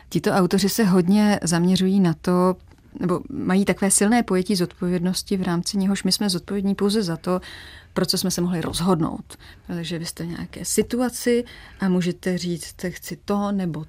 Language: Czech